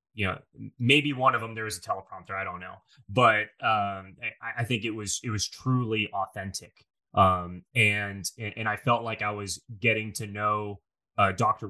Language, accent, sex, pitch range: English, American, male, 105-125 Hz